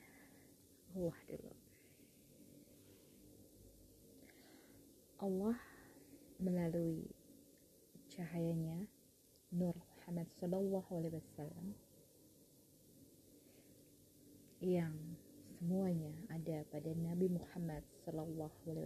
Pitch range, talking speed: 160-185 Hz, 55 wpm